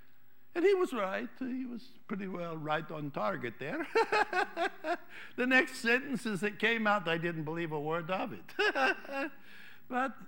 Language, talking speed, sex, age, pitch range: English, 150 wpm, male, 60-79, 155-255 Hz